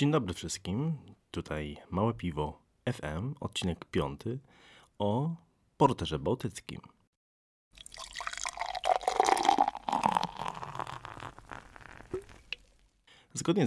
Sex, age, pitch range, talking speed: male, 30-49, 85-100 Hz, 55 wpm